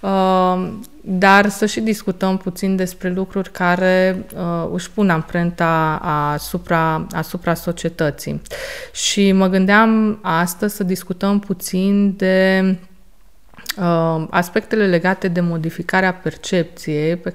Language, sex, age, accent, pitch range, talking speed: Romanian, female, 30-49, native, 160-195 Hz, 105 wpm